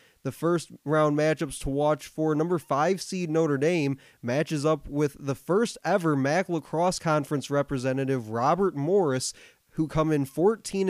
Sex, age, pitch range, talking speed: male, 20-39, 135-160 Hz, 155 wpm